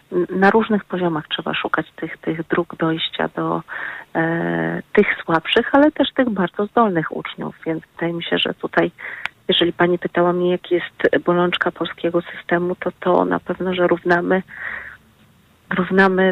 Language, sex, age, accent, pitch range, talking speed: Polish, female, 40-59, native, 170-185 Hz, 145 wpm